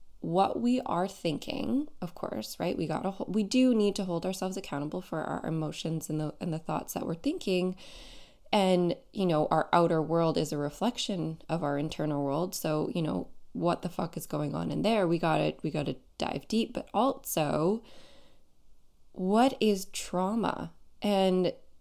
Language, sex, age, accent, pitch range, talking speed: English, female, 20-39, American, 155-205 Hz, 185 wpm